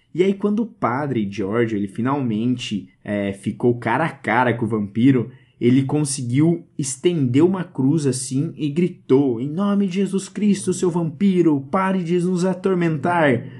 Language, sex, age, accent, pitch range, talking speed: Portuguese, male, 20-39, Brazilian, 115-150 Hz, 150 wpm